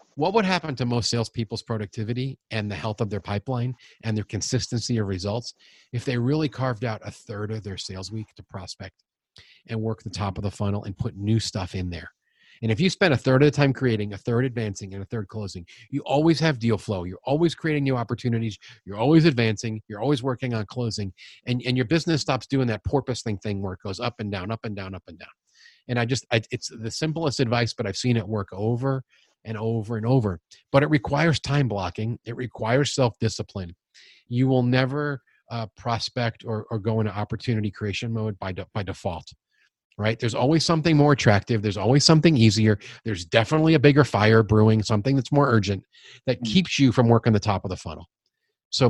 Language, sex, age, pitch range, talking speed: English, male, 40-59, 105-130 Hz, 210 wpm